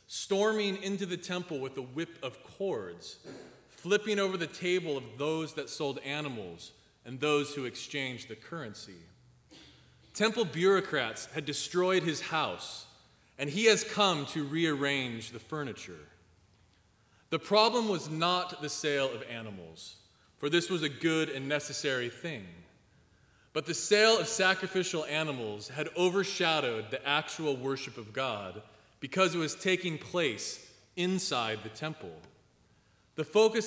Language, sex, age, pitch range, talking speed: English, male, 30-49, 130-180 Hz, 135 wpm